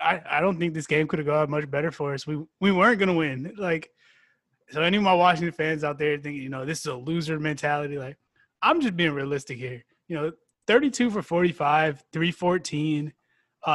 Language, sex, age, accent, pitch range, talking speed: English, male, 20-39, American, 145-180 Hz, 205 wpm